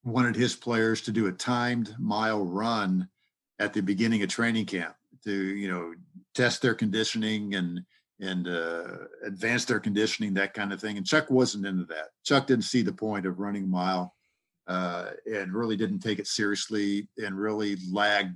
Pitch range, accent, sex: 95-115 Hz, American, male